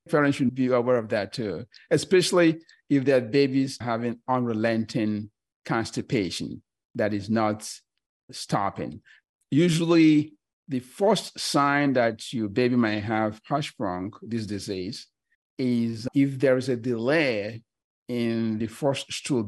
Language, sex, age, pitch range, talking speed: English, male, 50-69, 110-140 Hz, 125 wpm